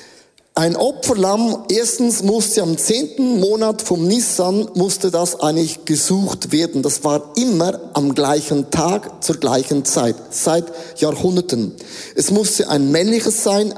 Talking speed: 130 wpm